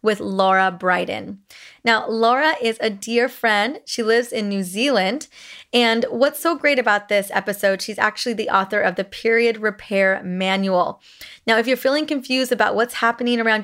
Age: 20-39